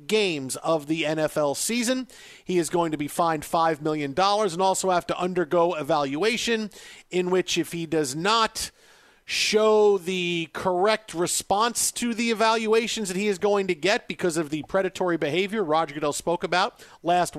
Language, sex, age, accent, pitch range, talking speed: English, male, 50-69, American, 155-195 Hz, 165 wpm